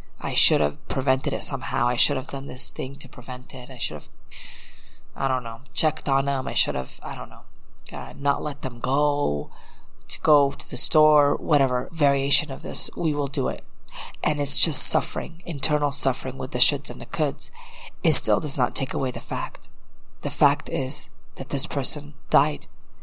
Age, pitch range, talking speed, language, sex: 20-39, 130-155 Hz, 195 wpm, English, female